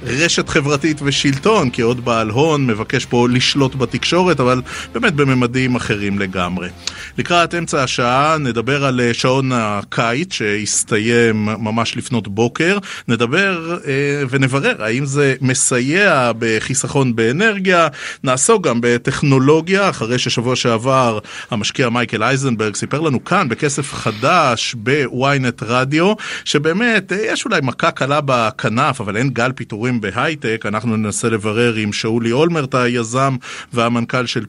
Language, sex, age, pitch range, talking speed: Hebrew, male, 30-49, 115-145 Hz, 125 wpm